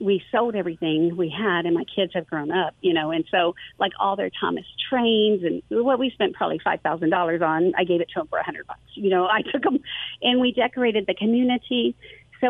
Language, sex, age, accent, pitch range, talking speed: English, female, 40-59, American, 180-225 Hz, 225 wpm